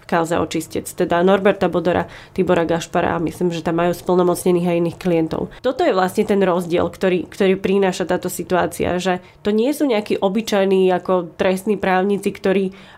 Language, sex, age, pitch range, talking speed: Slovak, female, 20-39, 180-210 Hz, 165 wpm